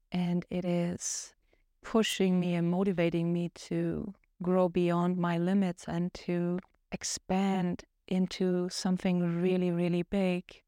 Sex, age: female, 30-49